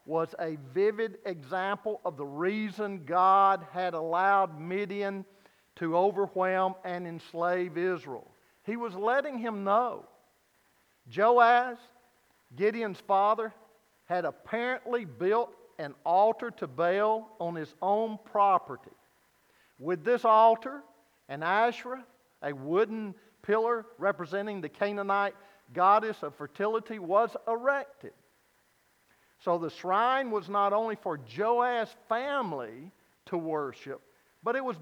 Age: 50-69